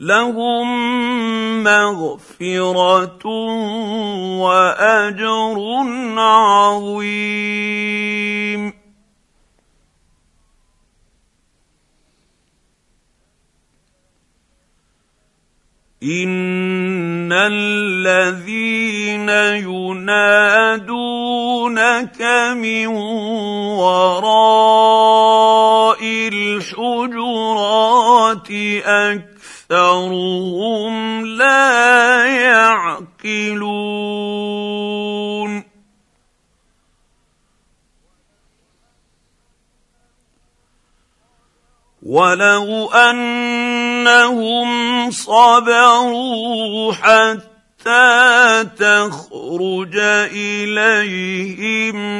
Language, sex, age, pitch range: Arabic, male, 50-69, 205-225 Hz